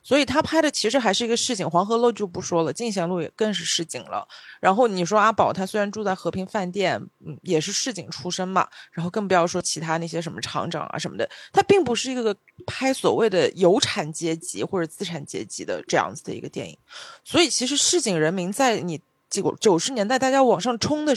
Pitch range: 185-265 Hz